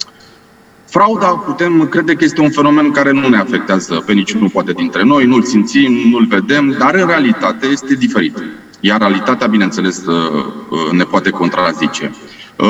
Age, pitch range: 30-49, 115-175 Hz